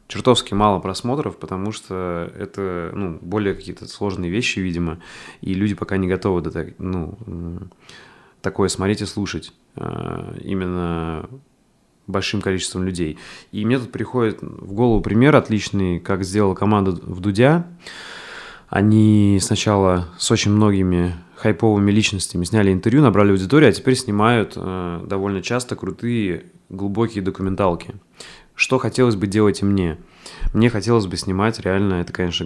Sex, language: male, Russian